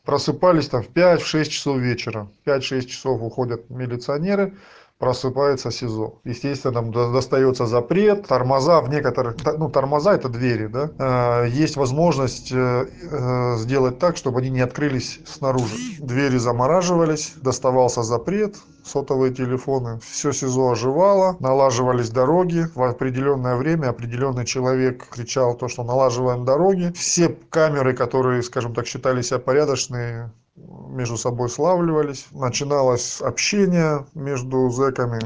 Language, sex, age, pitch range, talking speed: Russian, male, 20-39, 120-145 Hz, 120 wpm